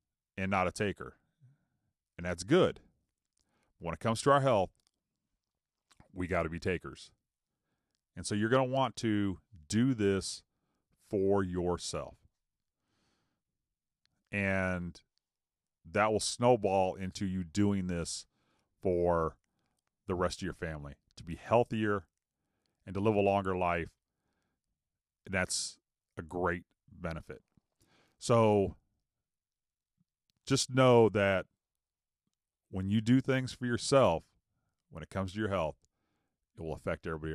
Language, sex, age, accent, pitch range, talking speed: English, male, 40-59, American, 85-110 Hz, 120 wpm